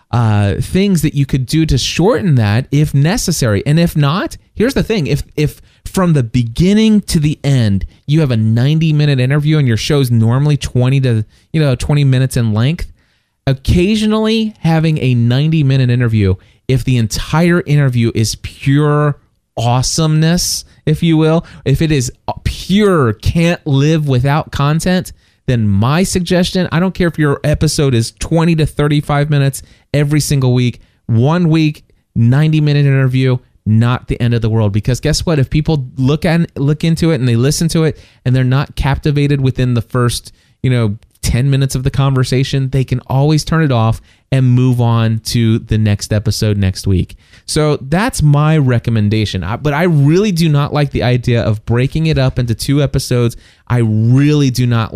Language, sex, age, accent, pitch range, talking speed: English, male, 30-49, American, 115-150 Hz, 180 wpm